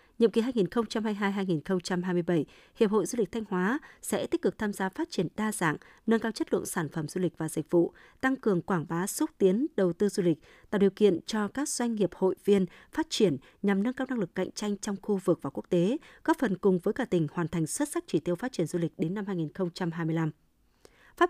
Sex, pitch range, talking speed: female, 175-225 Hz, 235 wpm